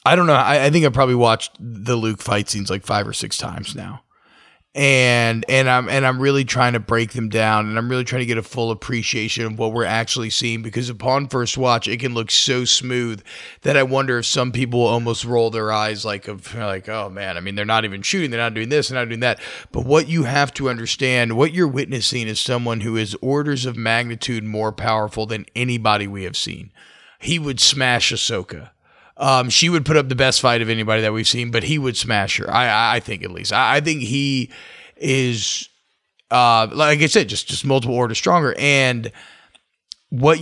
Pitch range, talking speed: 115-135 Hz, 220 wpm